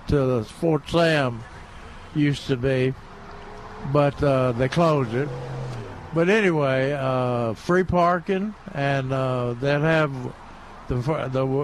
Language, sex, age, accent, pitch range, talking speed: English, male, 60-79, American, 125-165 Hz, 110 wpm